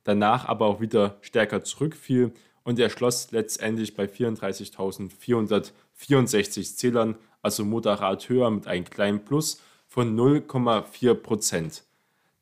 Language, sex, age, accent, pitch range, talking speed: German, male, 20-39, German, 105-135 Hz, 100 wpm